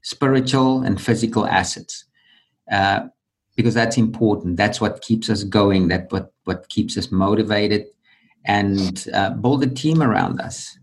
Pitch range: 95-115 Hz